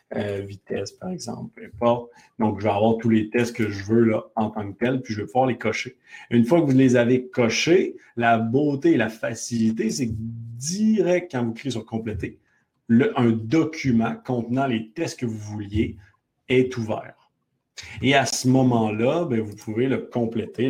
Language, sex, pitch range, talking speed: French, male, 110-125 Hz, 195 wpm